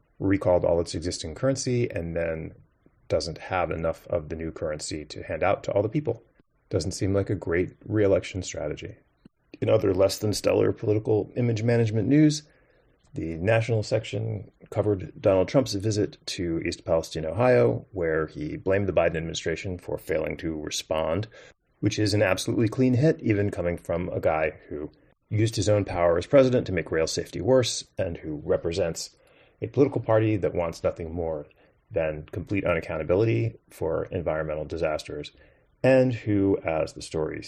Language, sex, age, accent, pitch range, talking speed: English, male, 30-49, American, 85-115 Hz, 165 wpm